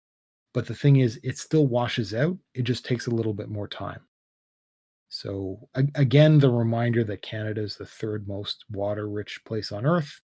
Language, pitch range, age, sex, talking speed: English, 105-135 Hz, 30-49, male, 175 wpm